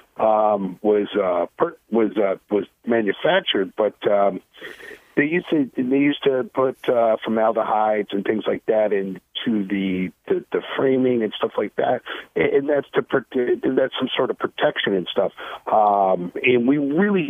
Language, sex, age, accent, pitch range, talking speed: English, male, 50-69, American, 105-135 Hz, 170 wpm